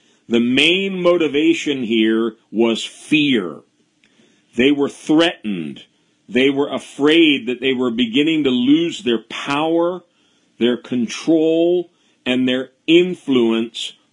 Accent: American